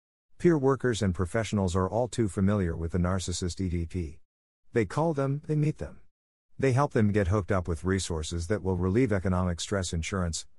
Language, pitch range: English, 85-115 Hz